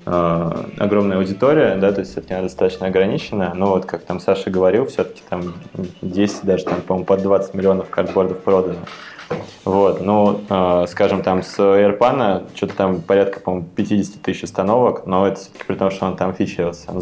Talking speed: 170 wpm